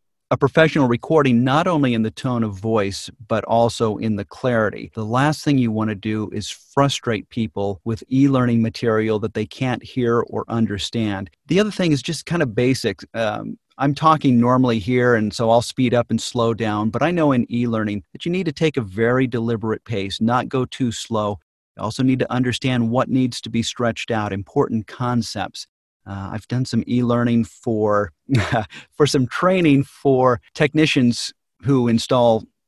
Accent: American